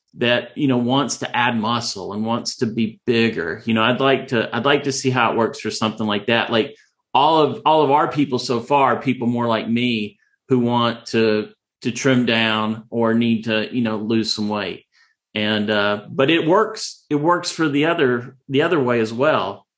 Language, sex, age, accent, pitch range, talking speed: English, male, 40-59, American, 110-135 Hz, 210 wpm